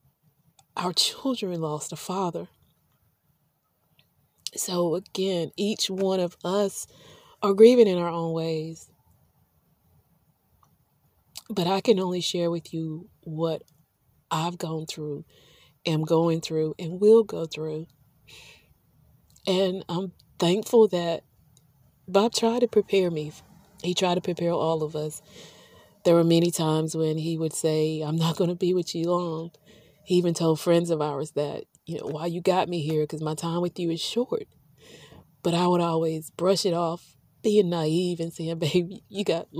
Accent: American